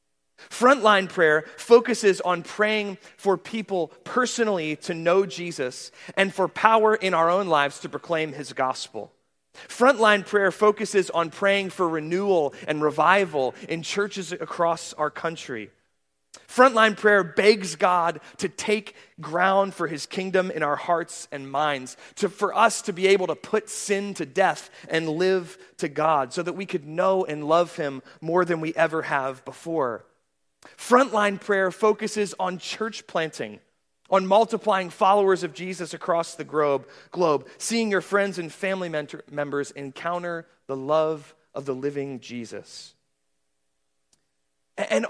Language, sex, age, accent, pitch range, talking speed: English, male, 30-49, American, 150-200 Hz, 140 wpm